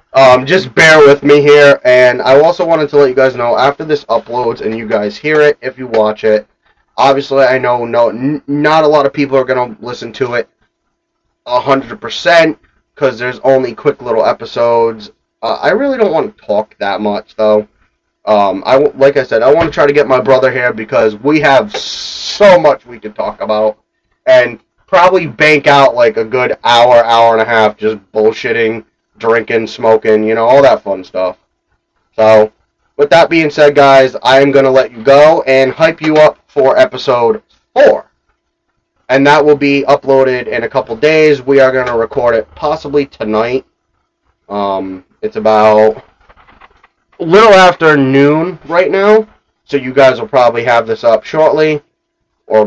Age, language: 30-49, English